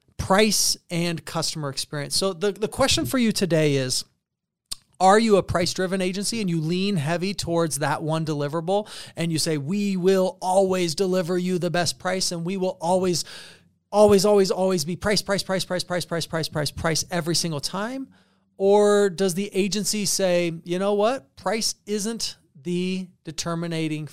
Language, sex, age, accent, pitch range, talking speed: English, male, 30-49, American, 155-190 Hz, 170 wpm